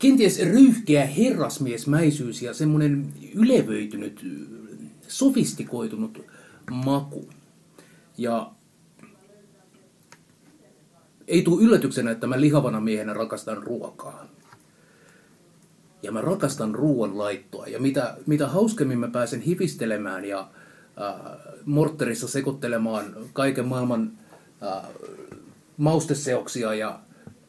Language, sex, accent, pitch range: Finnish, male, native, 125-175 Hz